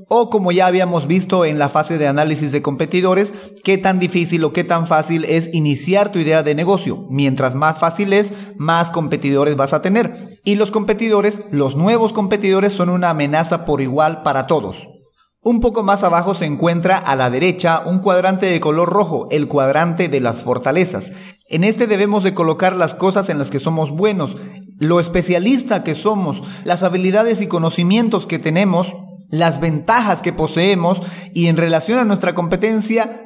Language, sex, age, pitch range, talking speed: Spanish, male, 40-59, 155-195 Hz, 175 wpm